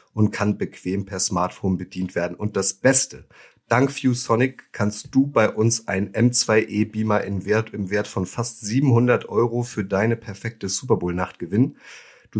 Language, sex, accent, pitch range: German, male, German, 95-115 Hz